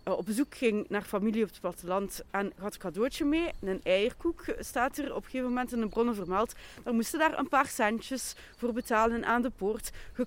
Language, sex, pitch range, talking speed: Dutch, female, 200-260 Hz, 215 wpm